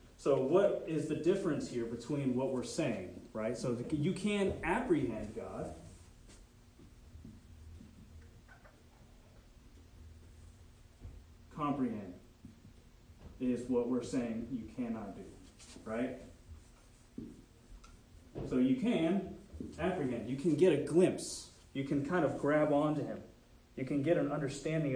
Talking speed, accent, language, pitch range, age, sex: 110 wpm, American, English, 110-150 Hz, 30-49, male